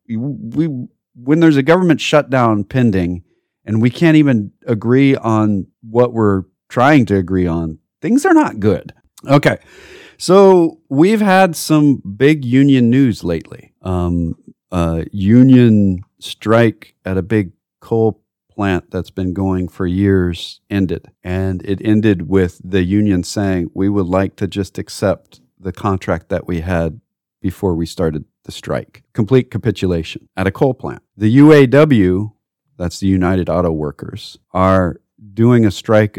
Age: 40-59